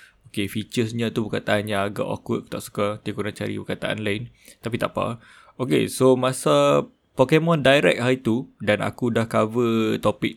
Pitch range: 105-120 Hz